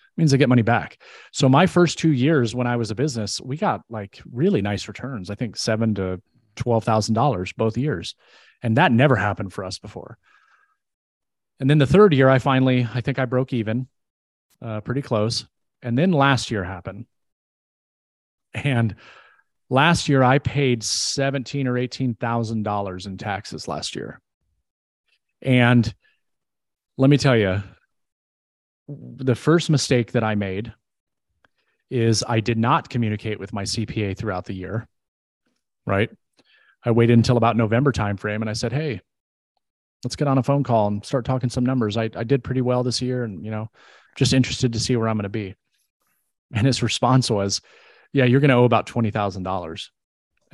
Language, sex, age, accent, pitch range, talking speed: English, male, 30-49, American, 105-130 Hz, 165 wpm